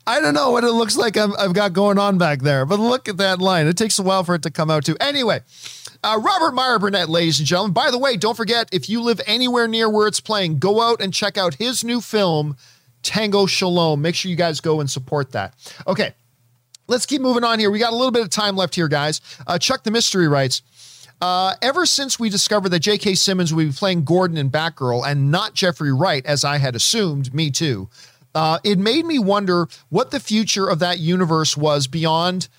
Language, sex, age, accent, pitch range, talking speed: English, male, 40-59, American, 150-205 Hz, 230 wpm